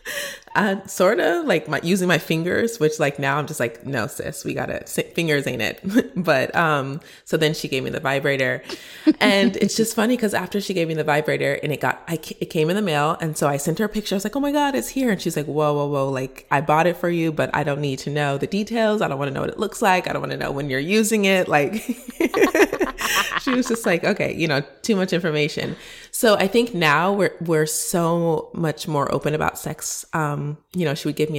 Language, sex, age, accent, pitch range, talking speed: English, female, 20-39, American, 145-185 Hz, 255 wpm